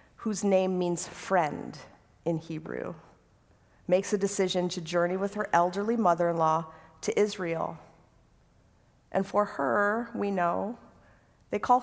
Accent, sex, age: American, female, 40-59